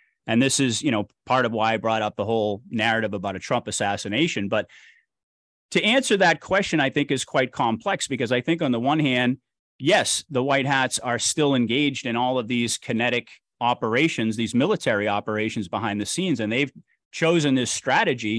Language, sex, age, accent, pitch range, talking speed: English, male, 30-49, American, 110-140 Hz, 195 wpm